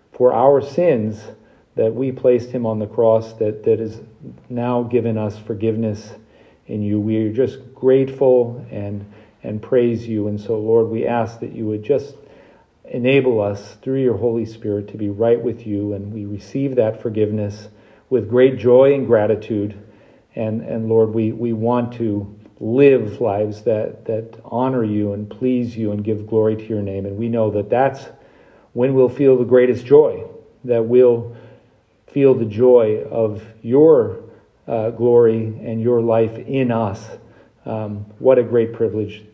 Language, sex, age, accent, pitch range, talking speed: English, male, 40-59, American, 110-130 Hz, 165 wpm